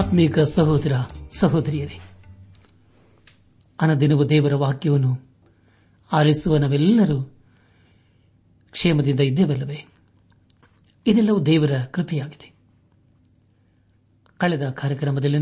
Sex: male